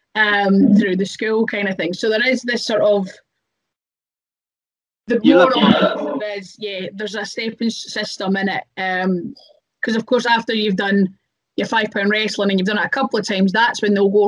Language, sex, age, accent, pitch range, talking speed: English, female, 20-39, British, 195-235 Hz, 195 wpm